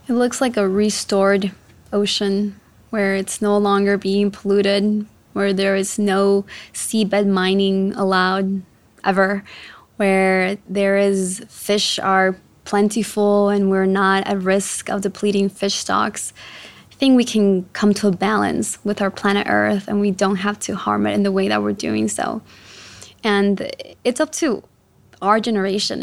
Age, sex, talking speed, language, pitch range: 20-39, female, 155 wpm, English, 195-210 Hz